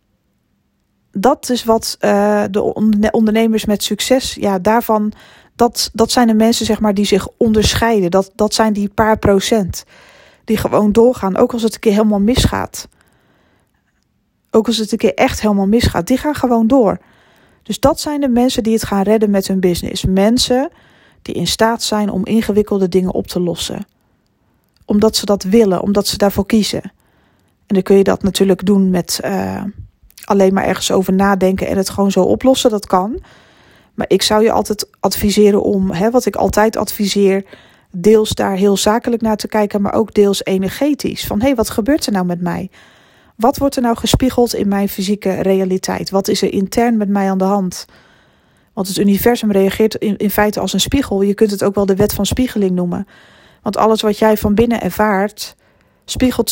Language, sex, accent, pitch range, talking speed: Dutch, female, Dutch, 195-225 Hz, 185 wpm